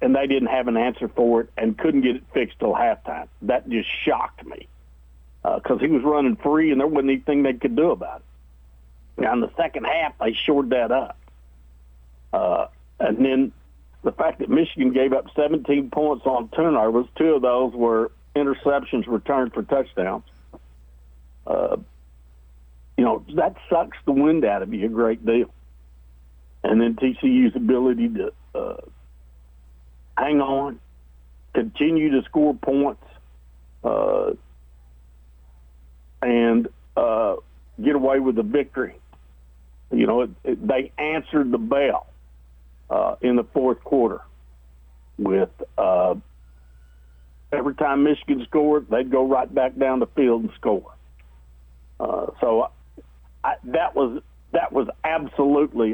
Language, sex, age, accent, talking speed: English, male, 60-79, American, 145 wpm